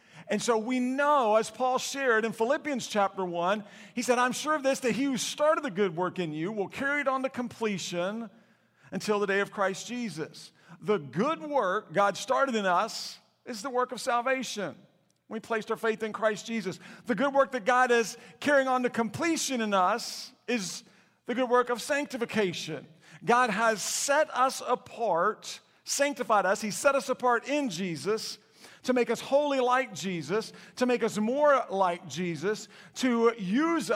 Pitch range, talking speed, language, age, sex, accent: 190-255 Hz, 180 wpm, English, 50-69, male, American